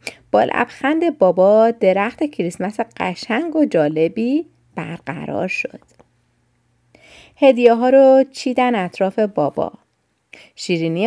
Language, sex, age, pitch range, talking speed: Persian, female, 30-49, 170-245 Hz, 90 wpm